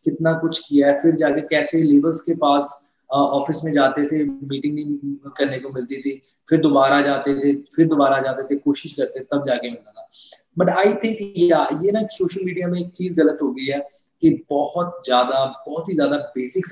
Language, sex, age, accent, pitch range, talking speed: Hindi, male, 20-39, native, 135-175 Hz, 190 wpm